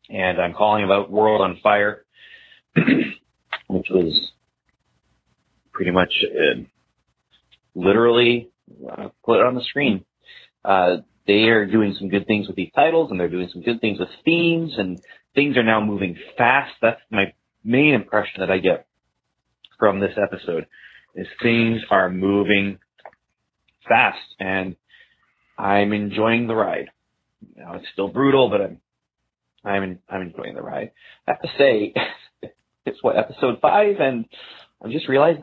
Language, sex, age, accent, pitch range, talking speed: English, male, 30-49, American, 95-140 Hz, 145 wpm